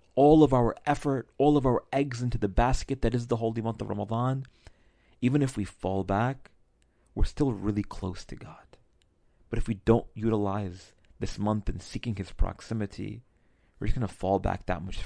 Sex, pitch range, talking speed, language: male, 95-120 Hz, 190 wpm, English